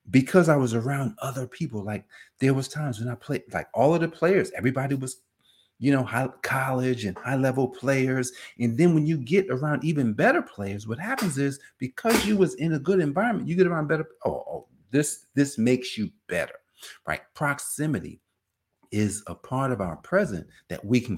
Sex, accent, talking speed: male, American, 195 wpm